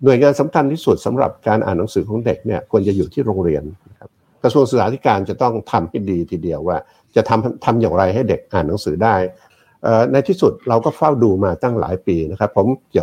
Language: Thai